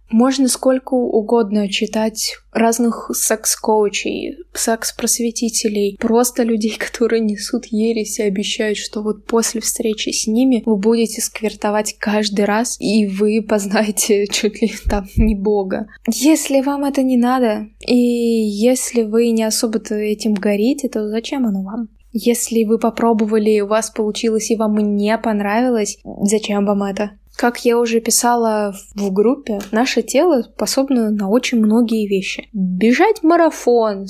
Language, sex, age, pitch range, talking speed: Russian, female, 20-39, 210-235 Hz, 140 wpm